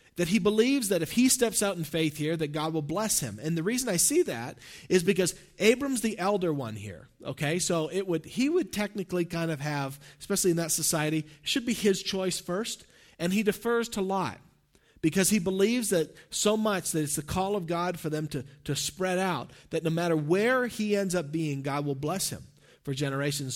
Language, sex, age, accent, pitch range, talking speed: English, male, 40-59, American, 145-180 Hz, 215 wpm